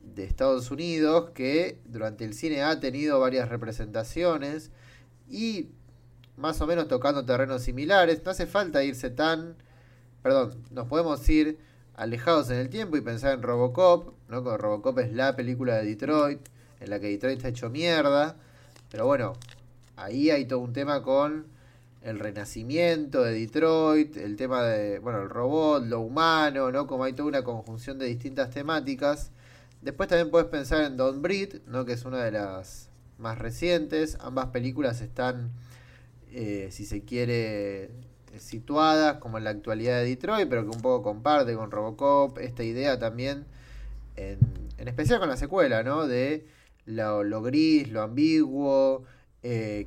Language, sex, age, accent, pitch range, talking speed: Spanish, male, 20-39, Argentinian, 115-150 Hz, 160 wpm